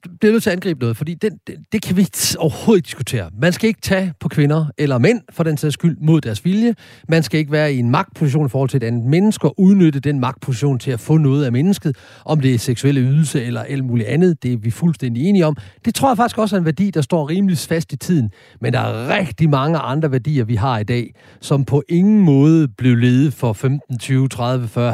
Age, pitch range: 40-59, 125-175 Hz